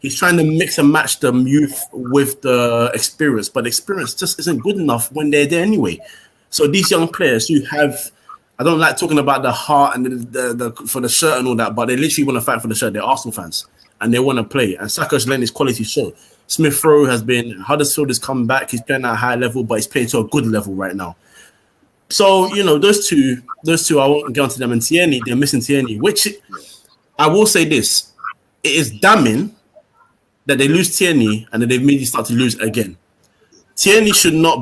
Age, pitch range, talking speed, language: 20-39, 120-155 Hz, 225 wpm, English